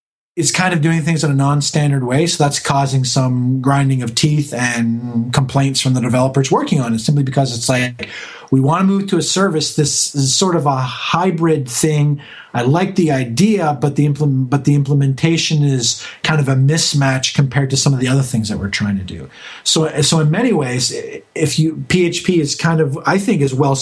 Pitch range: 135-160 Hz